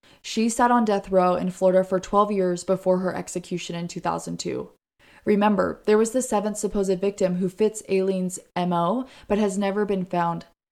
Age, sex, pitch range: 20-39, female, 180-205 Hz